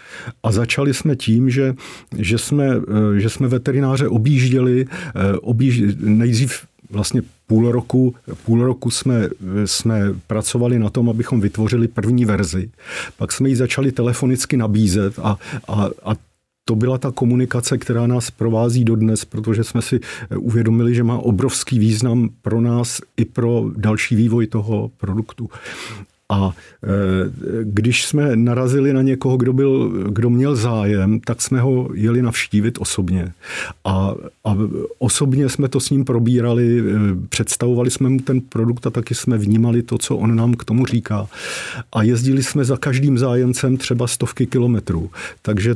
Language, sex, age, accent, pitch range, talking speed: Czech, male, 50-69, native, 110-130 Hz, 140 wpm